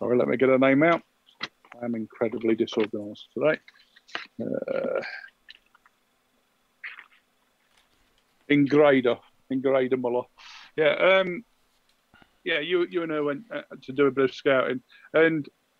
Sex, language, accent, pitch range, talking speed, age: male, English, British, 120-145 Hz, 120 wpm, 50-69